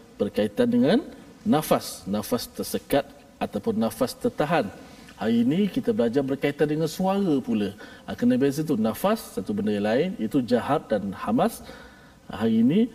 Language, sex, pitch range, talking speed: Malayalam, male, 150-245 Hz, 140 wpm